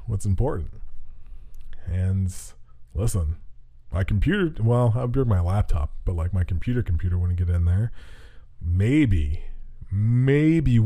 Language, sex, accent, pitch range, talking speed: English, male, American, 85-110 Hz, 120 wpm